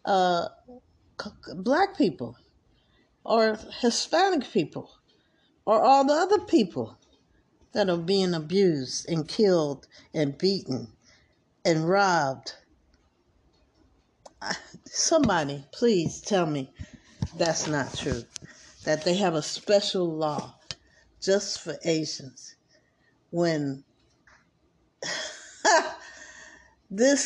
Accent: American